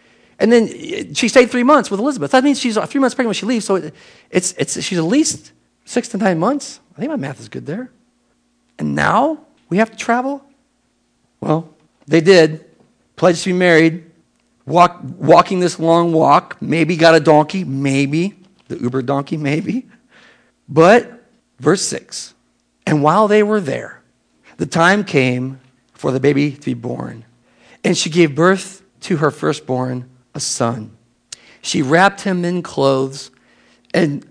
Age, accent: 50-69, American